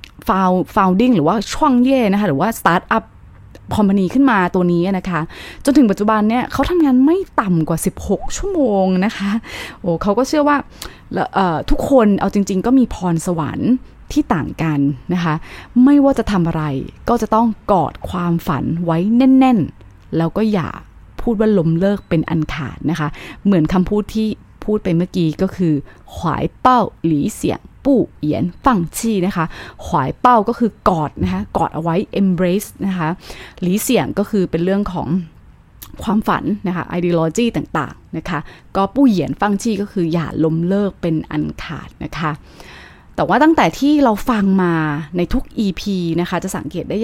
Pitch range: 165-220 Hz